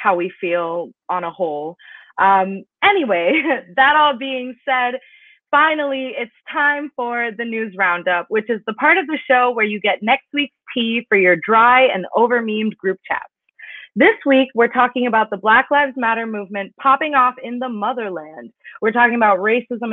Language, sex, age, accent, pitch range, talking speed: English, female, 20-39, American, 200-270 Hz, 175 wpm